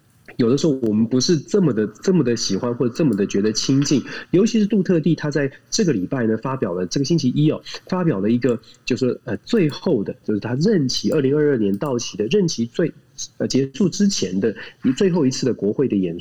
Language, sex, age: Chinese, male, 30-49